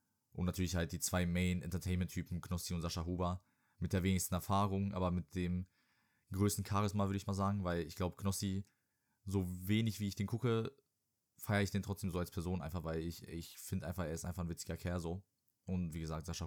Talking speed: 210 wpm